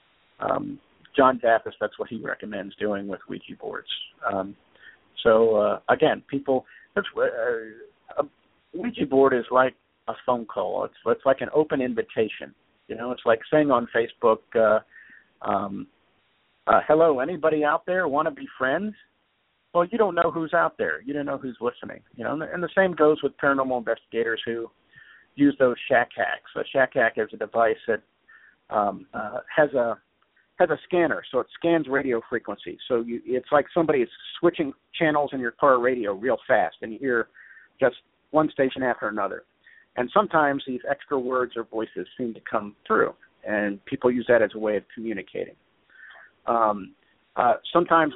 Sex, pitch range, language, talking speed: male, 120-165 Hz, English, 175 wpm